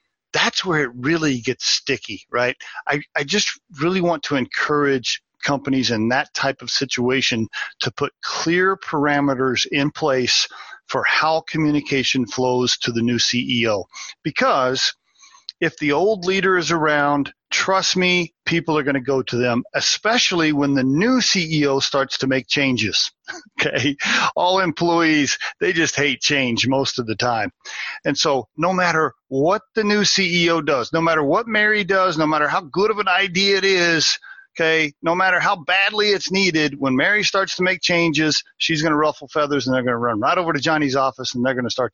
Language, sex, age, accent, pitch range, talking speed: English, male, 40-59, American, 130-170 Hz, 180 wpm